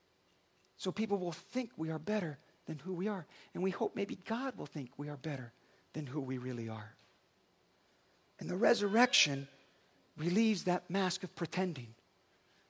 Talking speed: 160 wpm